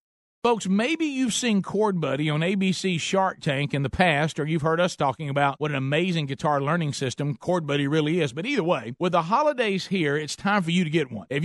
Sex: male